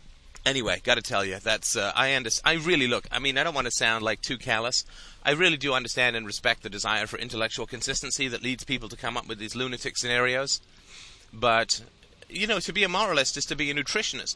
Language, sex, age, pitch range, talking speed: English, male, 30-49, 115-140 Hz, 225 wpm